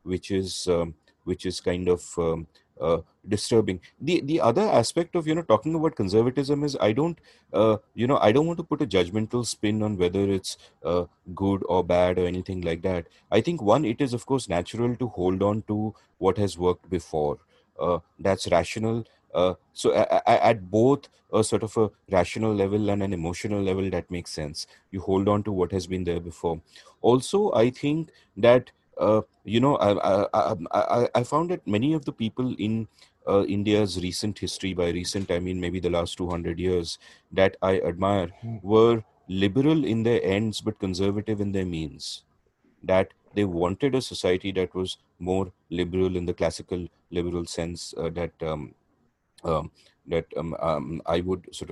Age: 30-49